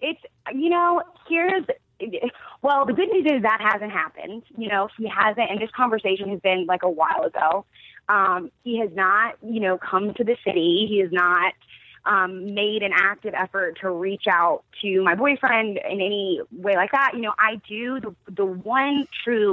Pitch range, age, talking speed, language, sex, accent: 195-240 Hz, 20-39, 190 wpm, English, female, American